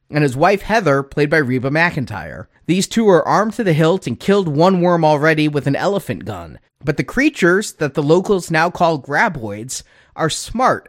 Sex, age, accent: male, 30-49, American